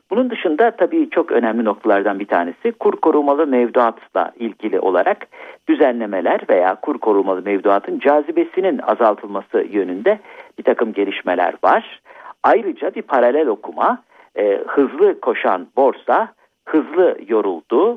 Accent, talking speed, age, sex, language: native, 115 wpm, 50-69, male, Turkish